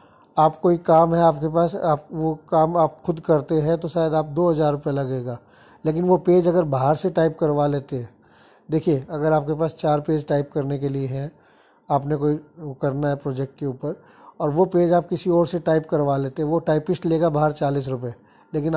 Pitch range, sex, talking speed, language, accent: 145-165 Hz, male, 210 wpm, Hindi, native